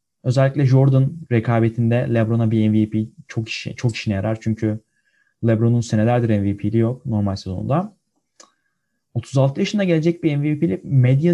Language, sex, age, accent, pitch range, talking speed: Turkish, male, 30-49, native, 115-175 Hz, 125 wpm